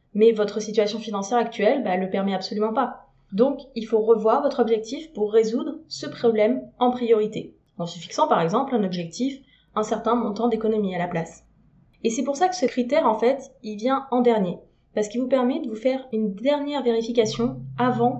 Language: French